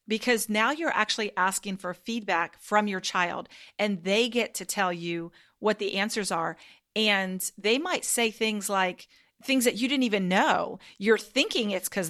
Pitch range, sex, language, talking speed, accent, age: 185-225 Hz, female, English, 180 wpm, American, 40-59